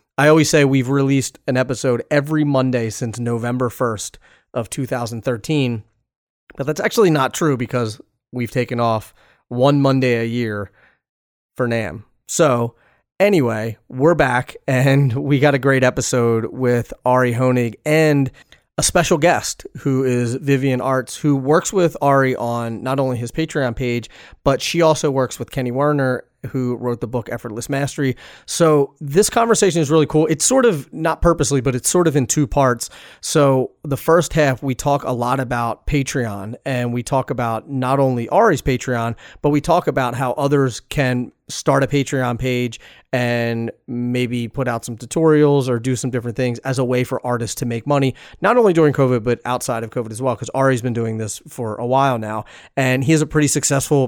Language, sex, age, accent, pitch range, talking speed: English, male, 30-49, American, 120-140 Hz, 180 wpm